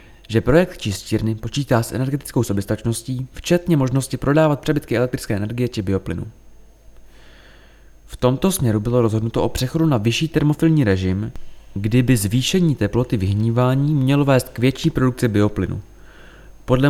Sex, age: male, 20-39